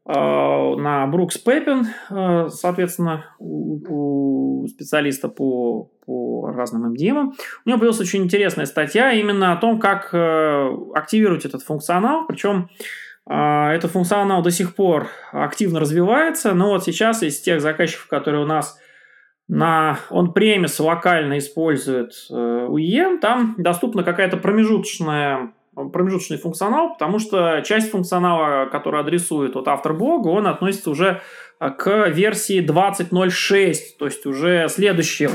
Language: Russian